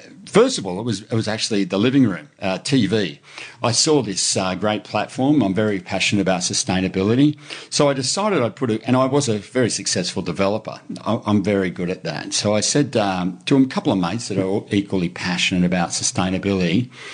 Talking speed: 205 wpm